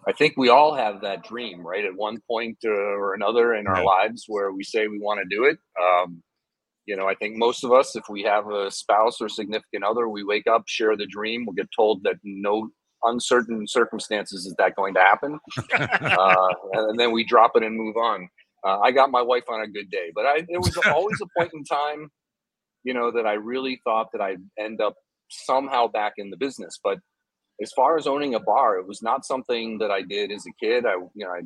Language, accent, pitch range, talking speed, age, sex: English, American, 105-135 Hz, 230 wpm, 40-59, male